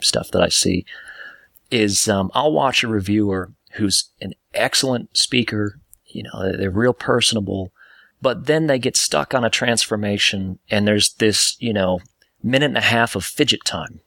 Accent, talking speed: American, 165 wpm